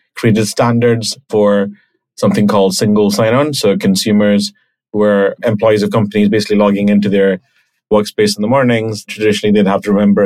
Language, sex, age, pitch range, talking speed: English, male, 30-49, 100-120 Hz, 160 wpm